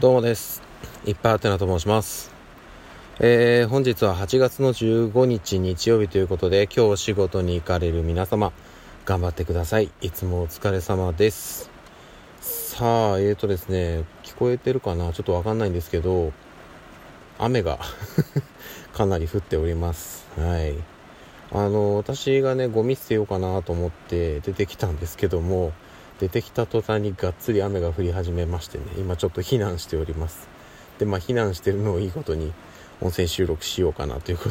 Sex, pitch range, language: male, 85-110 Hz, Japanese